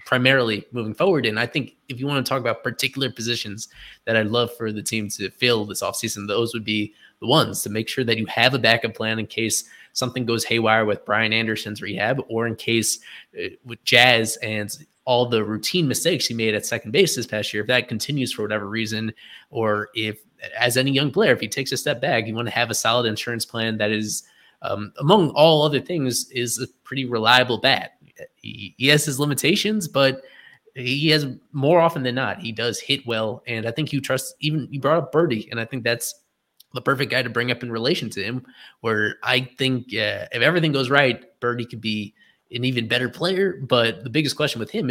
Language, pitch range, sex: English, 110-135 Hz, male